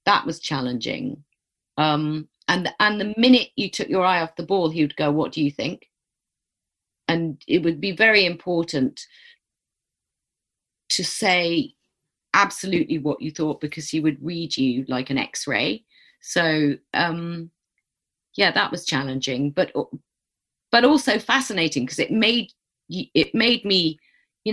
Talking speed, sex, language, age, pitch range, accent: 145 wpm, female, English, 40-59, 150-205 Hz, British